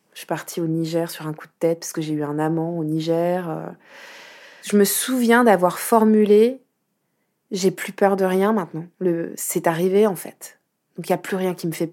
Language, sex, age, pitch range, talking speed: French, female, 20-39, 175-225 Hz, 220 wpm